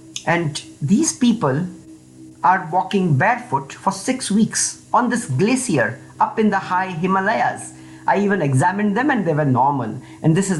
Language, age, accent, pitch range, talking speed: English, 50-69, Indian, 135-230 Hz, 160 wpm